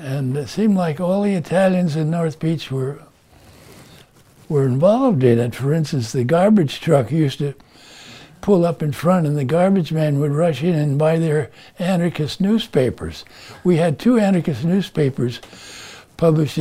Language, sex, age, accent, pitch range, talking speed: English, male, 60-79, American, 140-185 Hz, 160 wpm